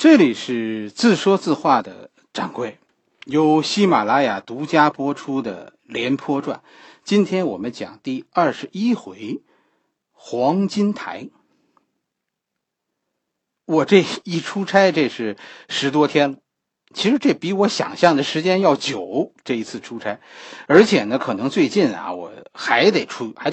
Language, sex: Chinese, male